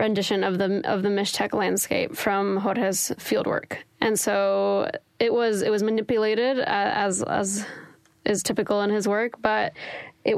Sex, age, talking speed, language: female, 10-29, 150 wpm, English